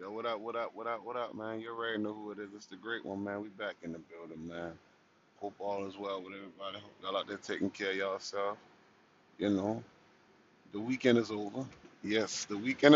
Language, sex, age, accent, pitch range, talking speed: English, male, 20-39, American, 115-145 Hz, 230 wpm